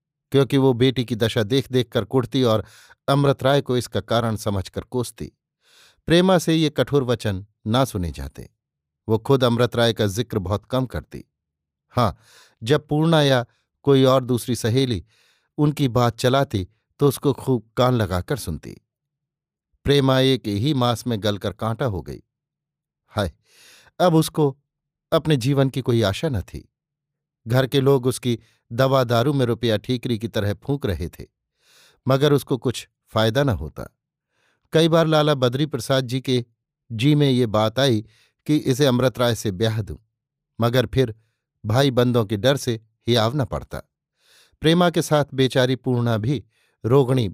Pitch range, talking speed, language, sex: 110-140 Hz, 155 wpm, Hindi, male